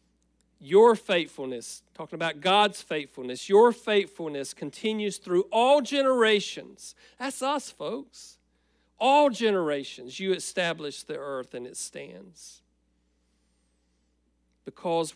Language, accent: English, American